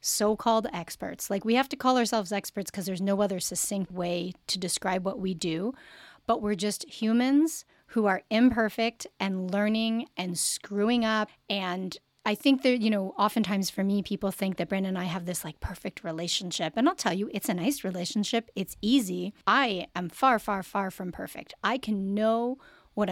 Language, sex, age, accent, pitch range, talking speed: English, female, 30-49, American, 190-230 Hz, 190 wpm